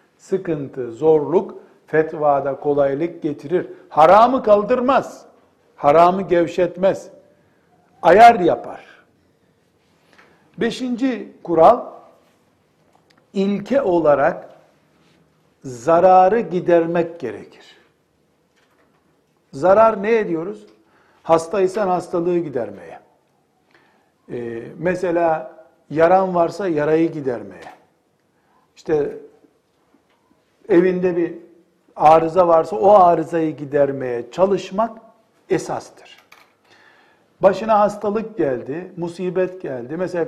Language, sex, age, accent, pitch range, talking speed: Turkish, male, 60-79, native, 160-195 Hz, 70 wpm